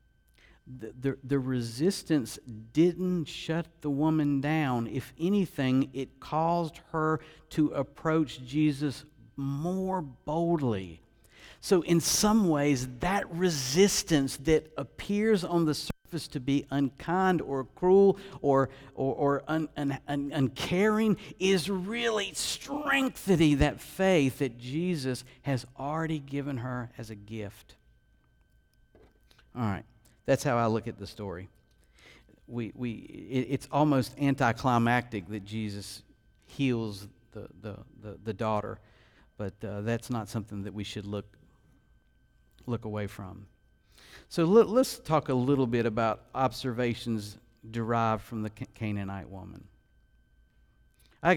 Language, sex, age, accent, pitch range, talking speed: English, male, 50-69, American, 110-155 Hz, 120 wpm